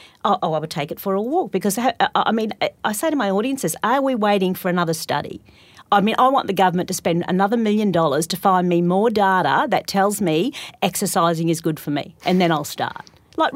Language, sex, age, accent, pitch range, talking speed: English, female, 40-59, Australian, 175-240 Hz, 225 wpm